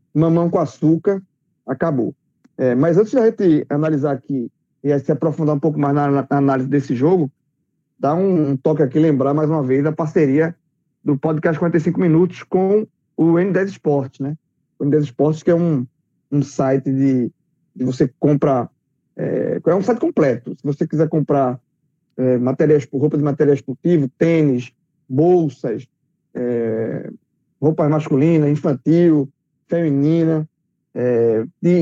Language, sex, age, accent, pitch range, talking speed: Portuguese, male, 20-39, Brazilian, 140-165 Hz, 145 wpm